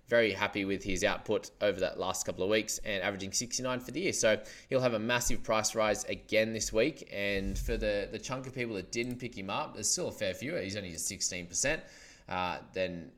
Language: English